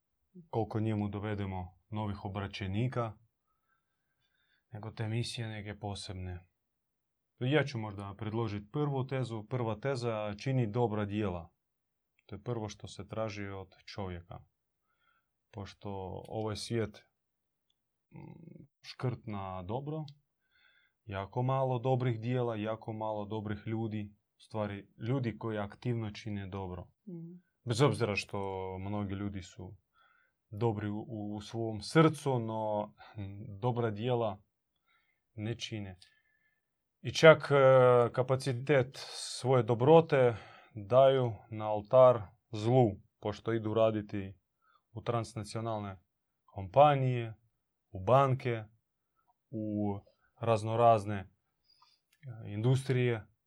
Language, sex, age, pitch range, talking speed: Croatian, male, 30-49, 105-125 Hz, 95 wpm